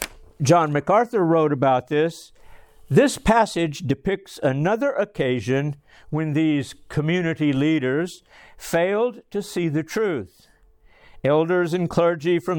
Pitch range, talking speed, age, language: 145-185 Hz, 110 wpm, 60-79, English